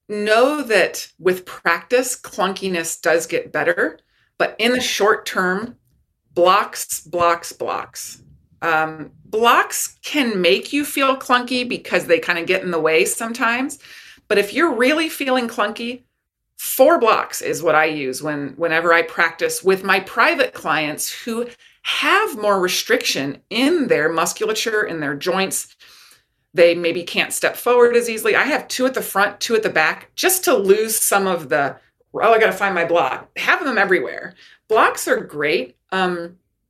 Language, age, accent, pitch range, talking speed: English, 30-49, American, 170-255 Hz, 160 wpm